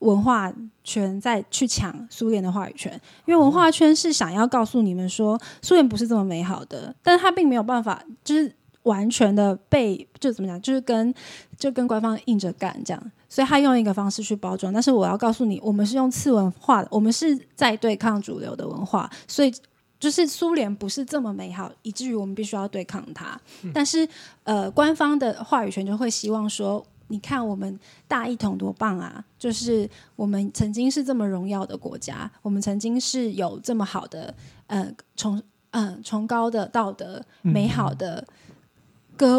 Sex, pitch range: female, 205-260 Hz